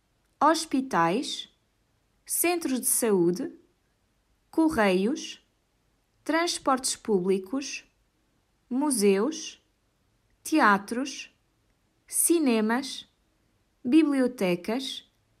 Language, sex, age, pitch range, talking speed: Portuguese, female, 20-39, 195-275 Hz, 45 wpm